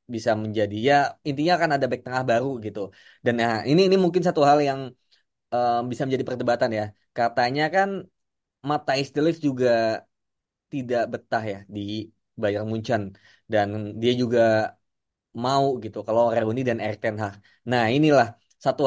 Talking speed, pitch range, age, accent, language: 145 wpm, 115-145 Hz, 20-39, native, Indonesian